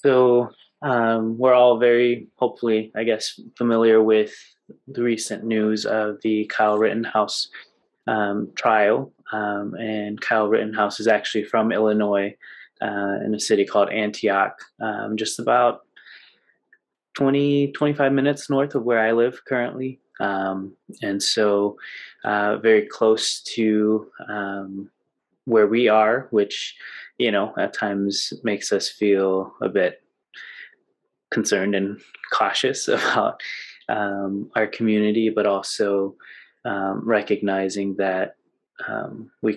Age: 20-39